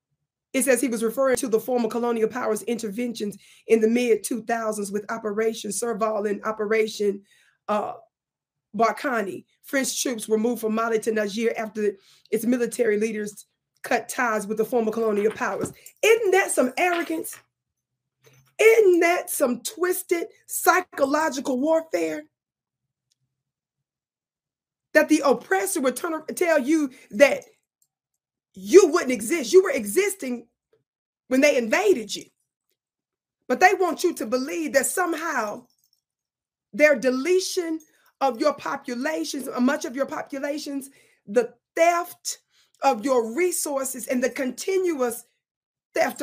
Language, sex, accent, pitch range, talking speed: English, female, American, 220-315 Hz, 120 wpm